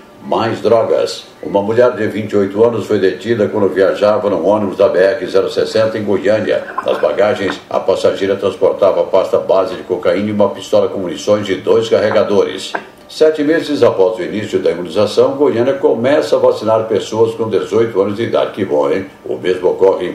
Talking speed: 175 wpm